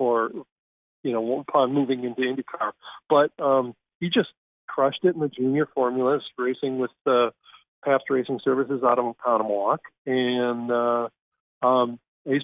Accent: American